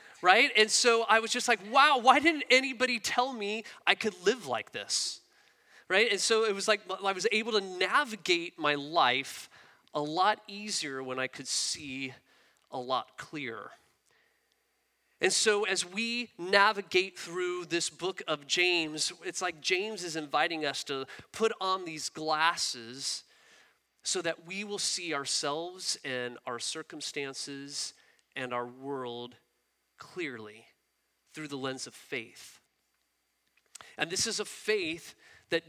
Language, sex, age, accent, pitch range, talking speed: English, male, 30-49, American, 140-215 Hz, 145 wpm